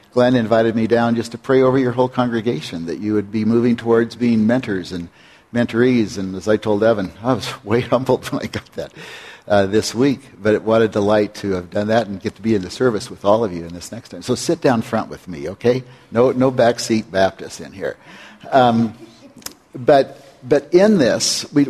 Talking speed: 220 wpm